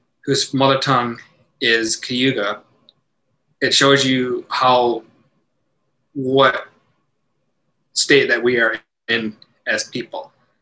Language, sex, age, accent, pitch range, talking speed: English, male, 20-39, American, 115-135 Hz, 95 wpm